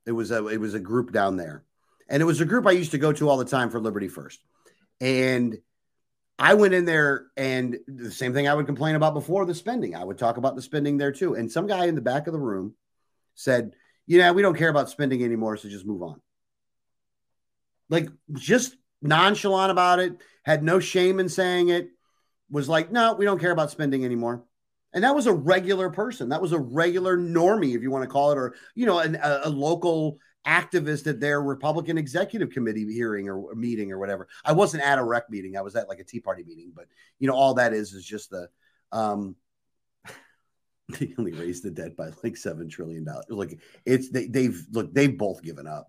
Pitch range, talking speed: 120-175 Hz, 215 wpm